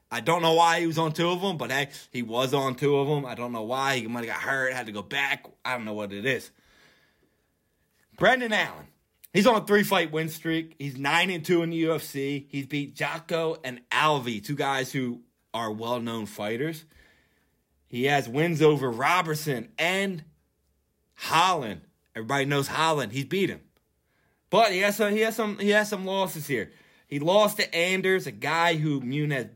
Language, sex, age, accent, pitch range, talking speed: English, male, 30-49, American, 125-165 Hz, 195 wpm